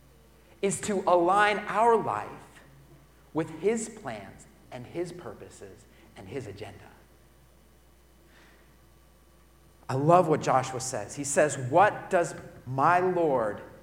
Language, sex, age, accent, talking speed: English, male, 40-59, American, 110 wpm